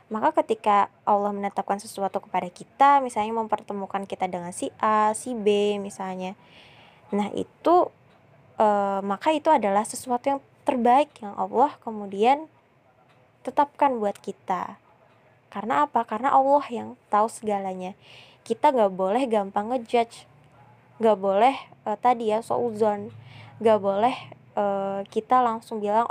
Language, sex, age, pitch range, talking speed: Indonesian, female, 10-29, 195-235 Hz, 125 wpm